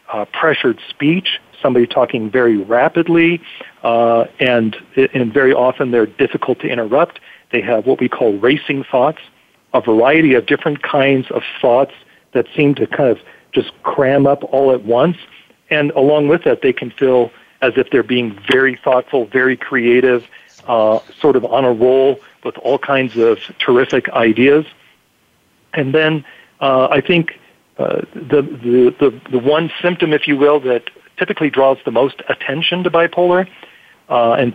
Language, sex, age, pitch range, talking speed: English, male, 50-69, 125-150 Hz, 160 wpm